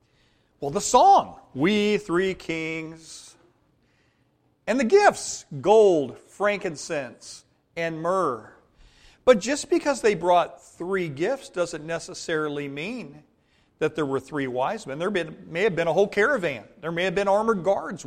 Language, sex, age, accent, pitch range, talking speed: English, male, 40-59, American, 150-205 Hz, 140 wpm